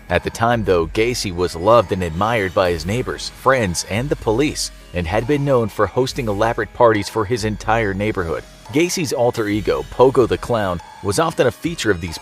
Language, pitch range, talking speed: English, 95-120 Hz, 195 wpm